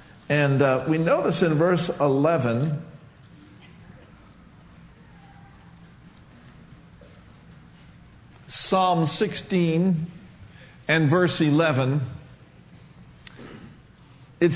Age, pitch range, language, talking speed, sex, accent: 50-69, 150-195 Hz, English, 55 wpm, male, American